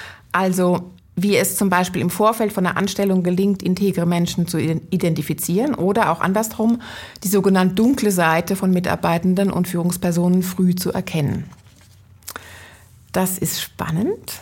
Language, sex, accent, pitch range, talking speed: German, female, German, 180-225 Hz, 135 wpm